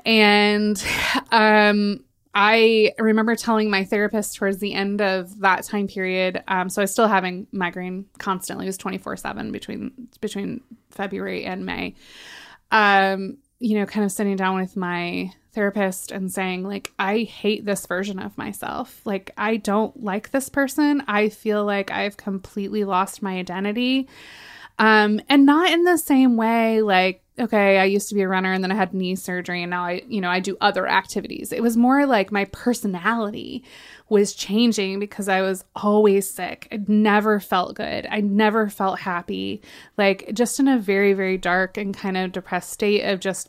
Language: English